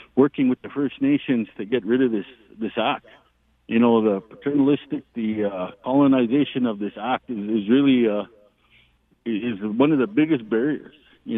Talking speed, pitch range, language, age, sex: 175 wpm, 115-175 Hz, English, 50-69, male